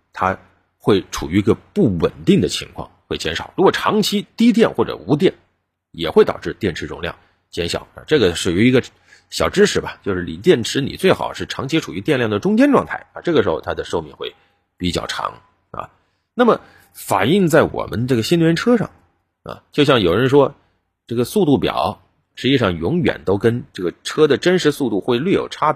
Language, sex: Chinese, male